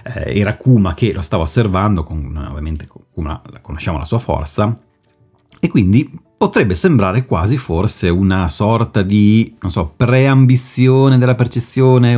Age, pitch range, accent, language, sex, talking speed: 30-49, 85-115 Hz, native, Italian, male, 140 wpm